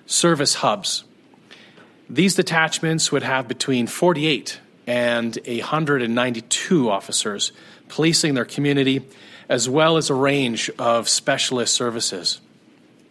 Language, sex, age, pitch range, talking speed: English, male, 40-59, 120-160 Hz, 100 wpm